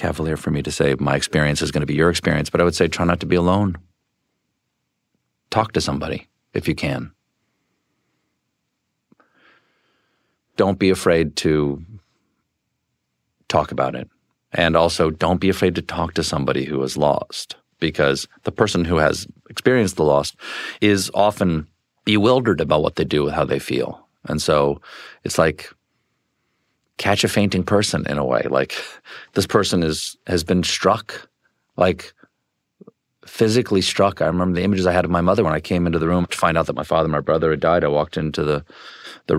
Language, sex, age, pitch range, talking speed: English, male, 40-59, 80-100 Hz, 180 wpm